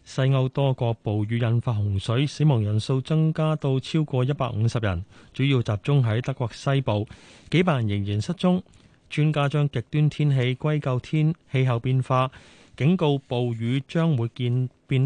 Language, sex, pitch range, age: Chinese, male, 110-145 Hz, 30-49